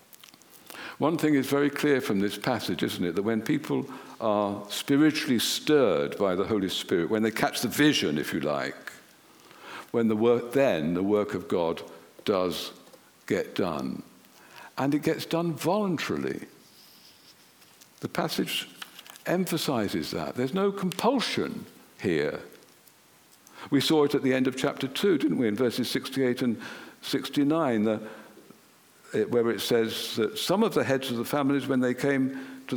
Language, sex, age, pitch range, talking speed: English, male, 60-79, 125-170 Hz, 155 wpm